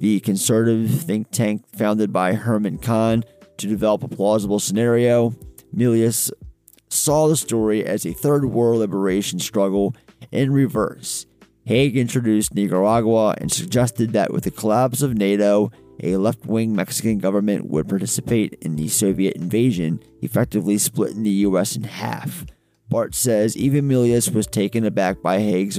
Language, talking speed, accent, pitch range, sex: English, 140 wpm, American, 100-125 Hz, male